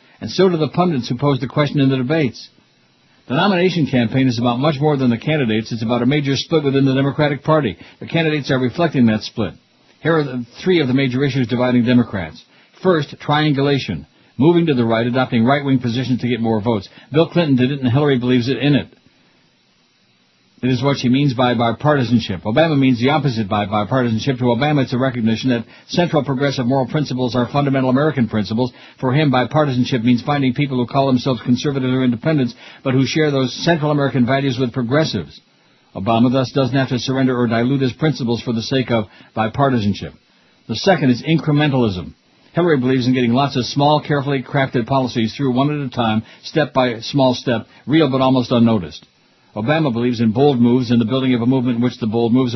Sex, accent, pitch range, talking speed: male, American, 120-140 Hz, 200 wpm